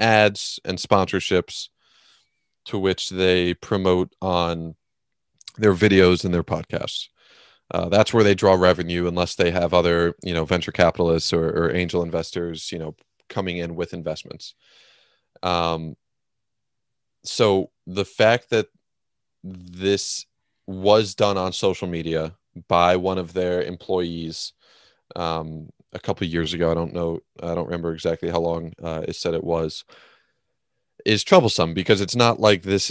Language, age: English, 30-49